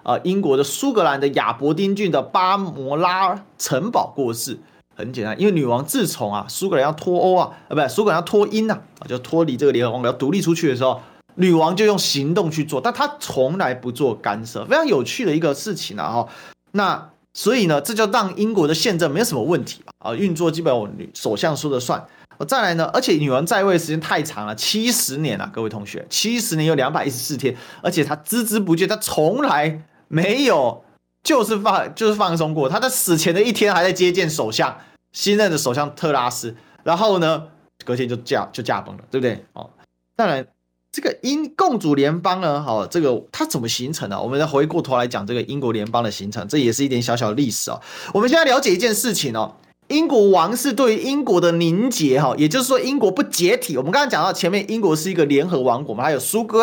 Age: 30-49